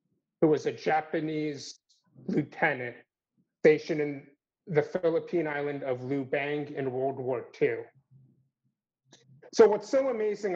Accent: American